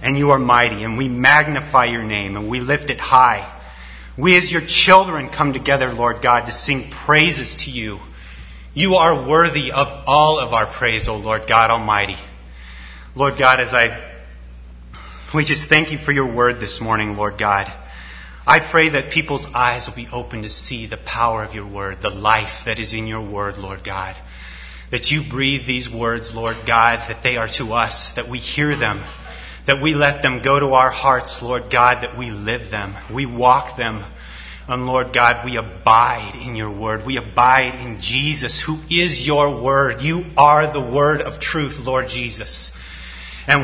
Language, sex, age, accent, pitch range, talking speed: English, male, 30-49, American, 105-140 Hz, 185 wpm